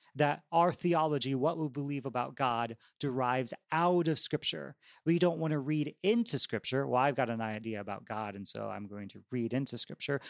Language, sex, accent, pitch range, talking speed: English, male, American, 110-150 Hz, 200 wpm